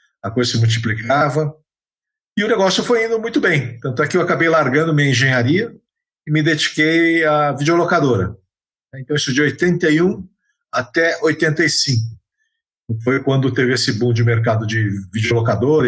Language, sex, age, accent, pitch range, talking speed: Portuguese, male, 50-69, Brazilian, 115-165 Hz, 145 wpm